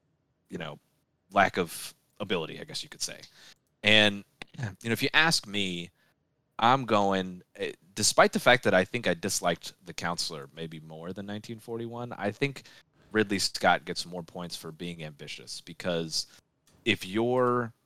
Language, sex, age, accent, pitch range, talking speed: English, male, 30-49, American, 85-110 Hz, 155 wpm